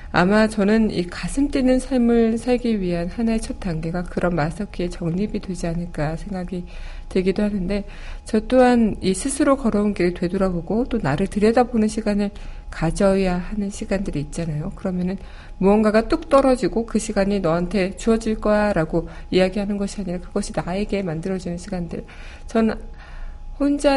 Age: 60-79